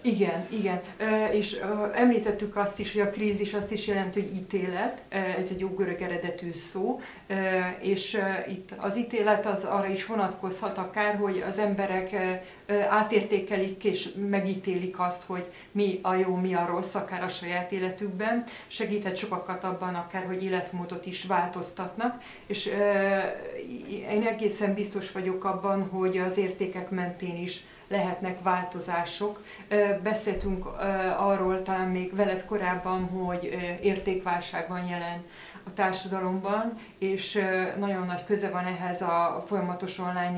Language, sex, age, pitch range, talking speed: Hungarian, female, 30-49, 180-205 Hz, 130 wpm